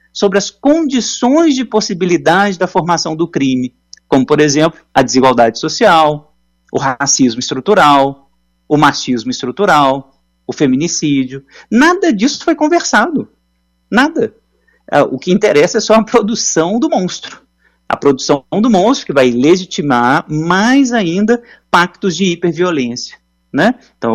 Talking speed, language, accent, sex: 125 wpm, Portuguese, Brazilian, male